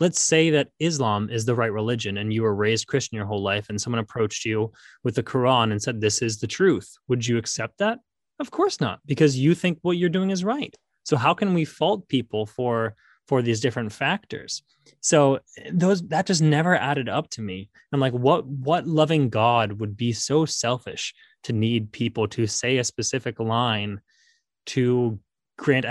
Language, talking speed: English, 195 wpm